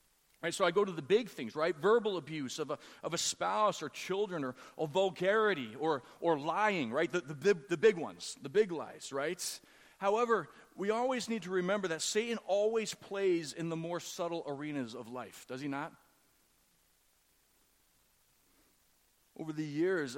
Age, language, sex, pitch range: 40-59, English, male, 130-180 Hz